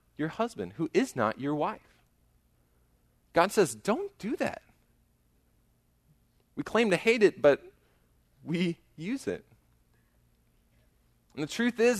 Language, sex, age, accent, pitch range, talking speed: English, male, 20-39, American, 150-220 Hz, 125 wpm